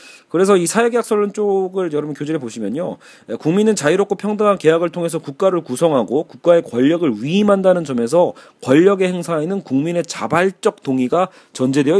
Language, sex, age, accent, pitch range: Korean, male, 40-59, native, 150-200 Hz